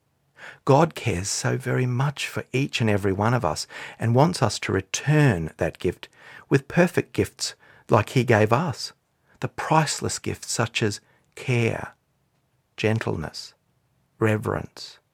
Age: 50-69